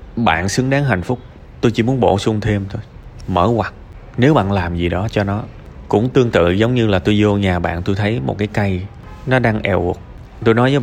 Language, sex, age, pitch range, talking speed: Vietnamese, male, 20-39, 95-125 Hz, 240 wpm